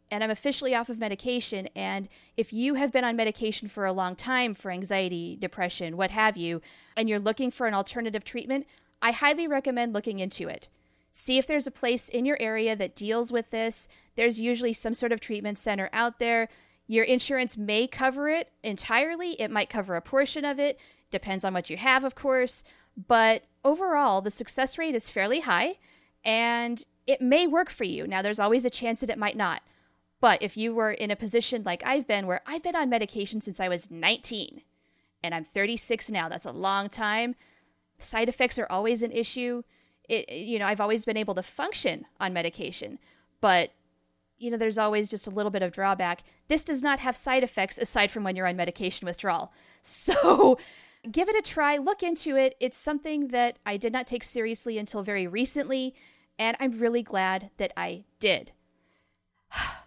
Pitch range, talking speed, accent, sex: 200-255 Hz, 195 wpm, American, female